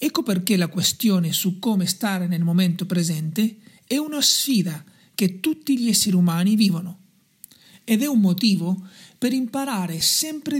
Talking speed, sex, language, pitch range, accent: 145 wpm, male, Italian, 185-230 Hz, native